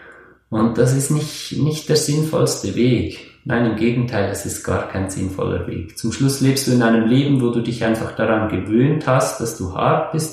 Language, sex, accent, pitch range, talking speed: German, male, German, 110-135 Hz, 205 wpm